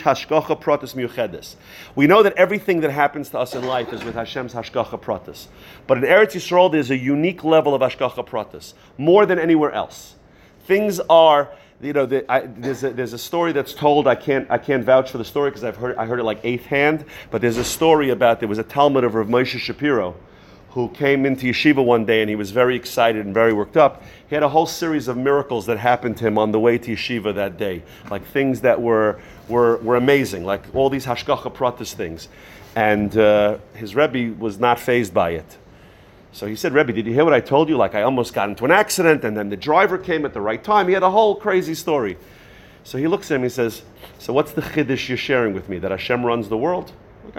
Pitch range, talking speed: 115-150 Hz, 230 wpm